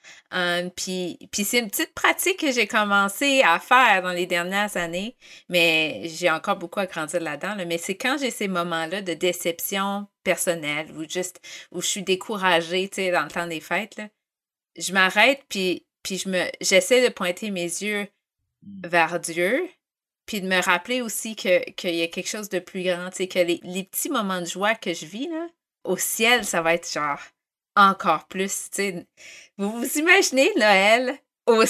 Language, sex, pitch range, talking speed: French, female, 175-225 Hz, 180 wpm